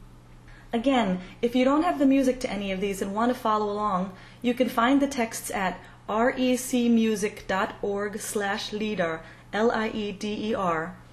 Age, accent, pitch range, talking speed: 30-49, American, 185-240 Hz, 140 wpm